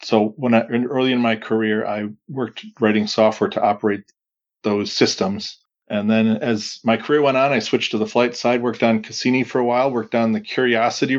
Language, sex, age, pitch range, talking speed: English, male, 40-59, 110-125 Hz, 210 wpm